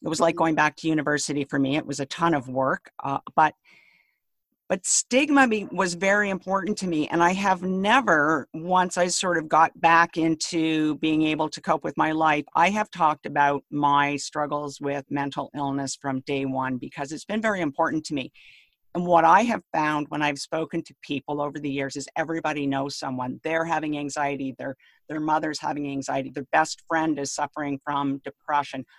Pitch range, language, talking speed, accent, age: 140-165 Hz, English, 195 wpm, American, 50-69